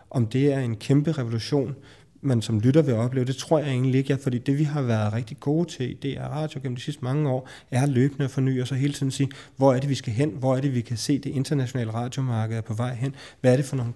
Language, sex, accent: Danish, male, native